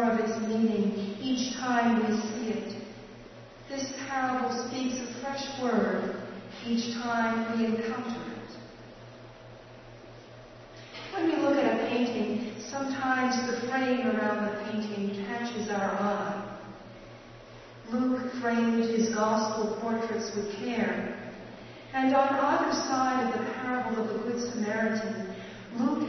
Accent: American